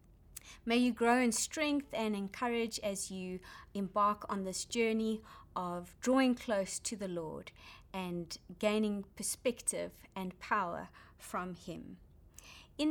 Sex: female